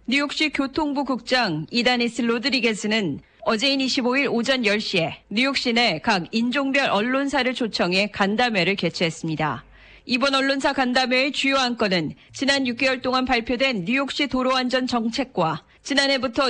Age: 40-59